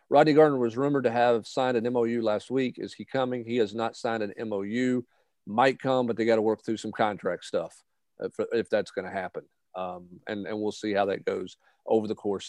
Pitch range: 105-125 Hz